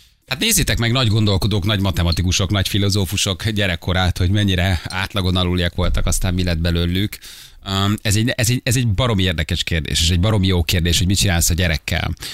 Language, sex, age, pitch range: Hungarian, male, 30-49, 90-105 Hz